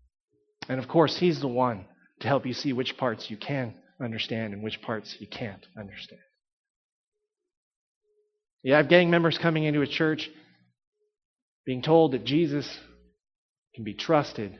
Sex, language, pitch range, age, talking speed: male, English, 120-165 Hz, 30-49, 150 wpm